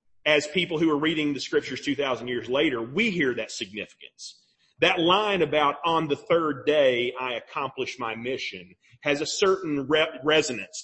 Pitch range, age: 135-200 Hz, 40-59